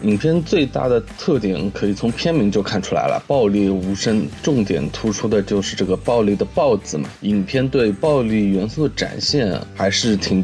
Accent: native